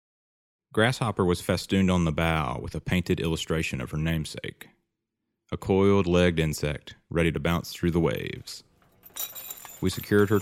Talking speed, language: 150 wpm, English